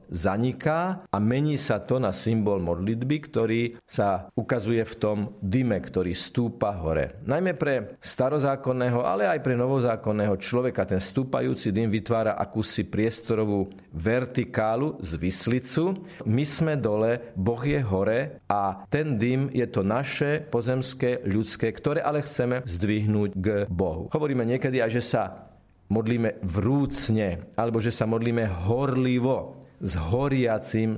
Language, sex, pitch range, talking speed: Slovak, male, 100-130 Hz, 130 wpm